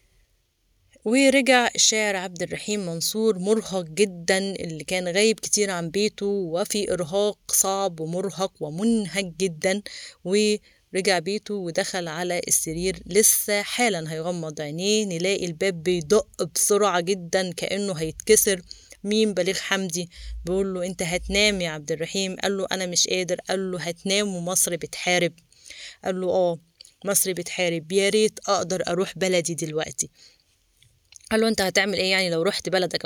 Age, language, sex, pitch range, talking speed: 20-39, Arabic, female, 175-210 Hz, 125 wpm